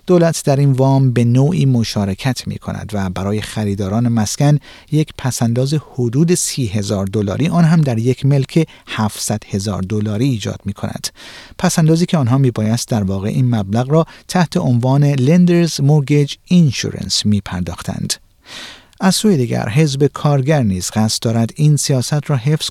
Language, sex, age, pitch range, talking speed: Persian, male, 50-69, 110-155 Hz, 150 wpm